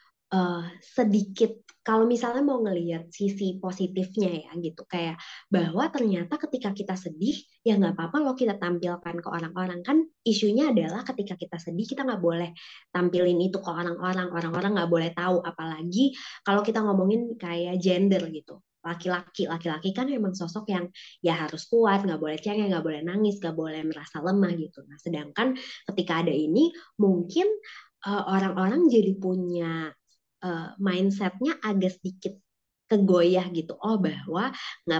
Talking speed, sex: 150 wpm, male